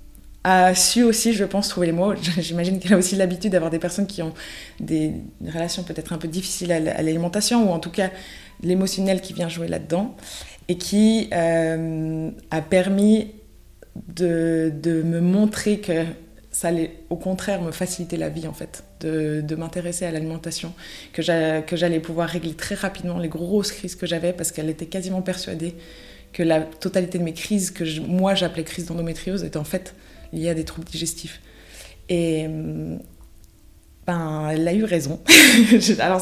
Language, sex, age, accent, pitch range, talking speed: French, female, 20-39, French, 165-190 Hz, 175 wpm